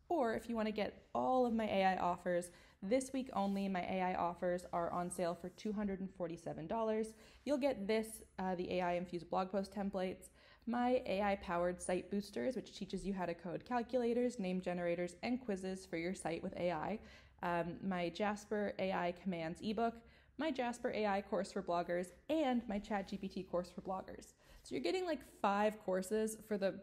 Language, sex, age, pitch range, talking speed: English, female, 20-39, 180-225 Hz, 175 wpm